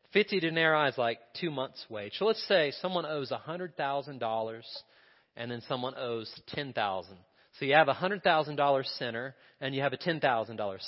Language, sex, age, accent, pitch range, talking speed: English, male, 40-59, American, 120-165 Hz, 160 wpm